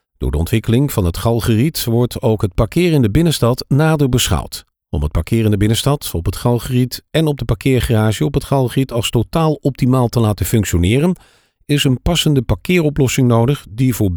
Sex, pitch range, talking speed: male, 105-140 Hz, 185 wpm